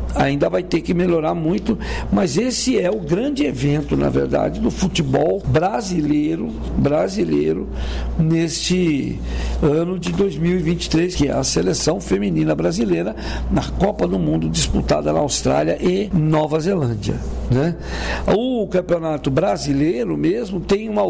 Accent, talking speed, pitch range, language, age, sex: Brazilian, 130 wpm, 135-175 Hz, Portuguese, 60-79, male